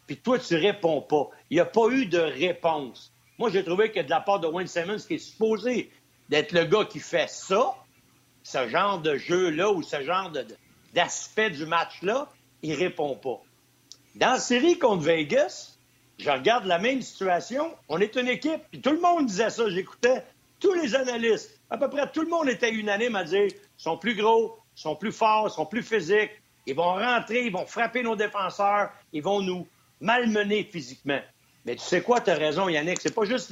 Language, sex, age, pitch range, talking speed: French, male, 60-79, 160-230 Hz, 205 wpm